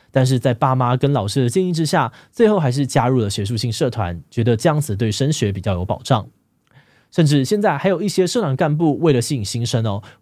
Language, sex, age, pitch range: Chinese, male, 20-39, 115-150 Hz